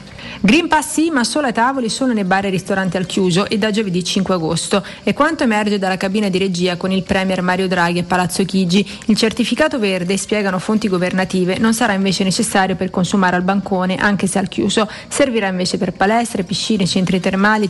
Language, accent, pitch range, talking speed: Italian, native, 185-220 Hz, 200 wpm